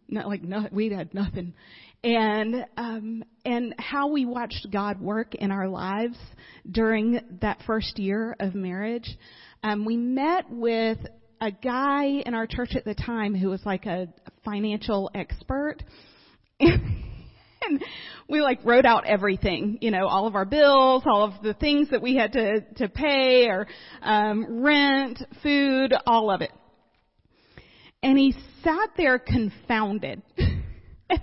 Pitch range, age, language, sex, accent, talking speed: 200-250 Hz, 40-59, English, female, American, 145 wpm